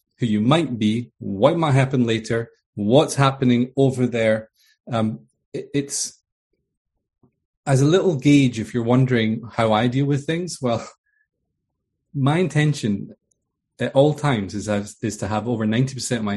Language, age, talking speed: English, 30-49, 155 wpm